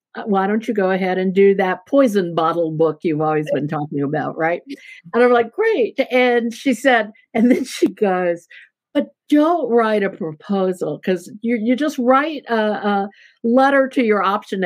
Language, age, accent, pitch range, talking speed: English, 60-79, American, 185-245 Hz, 180 wpm